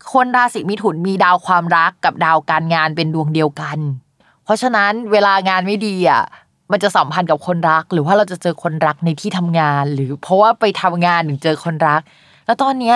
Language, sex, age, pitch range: Thai, female, 20-39, 160-205 Hz